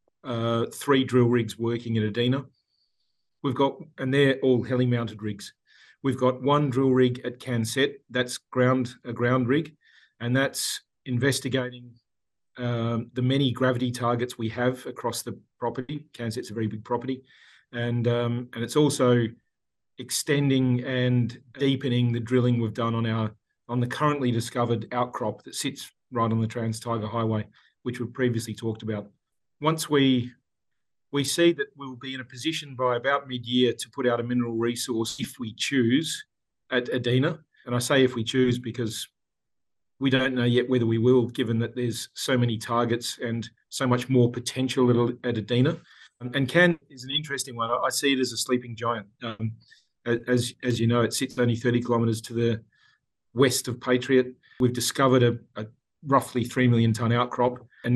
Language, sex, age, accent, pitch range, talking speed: English, male, 40-59, Australian, 115-130 Hz, 170 wpm